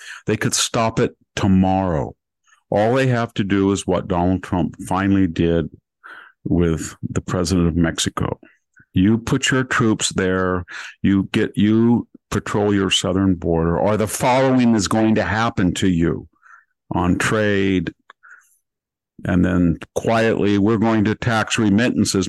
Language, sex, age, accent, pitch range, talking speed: English, male, 50-69, American, 95-110 Hz, 140 wpm